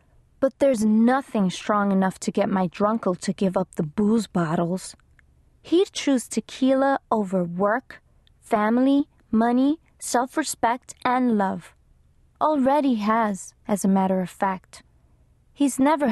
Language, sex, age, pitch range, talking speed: English, female, 20-39, 200-285 Hz, 125 wpm